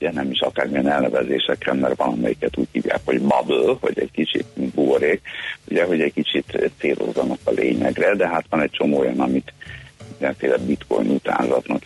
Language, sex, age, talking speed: Hungarian, male, 60-79, 160 wpm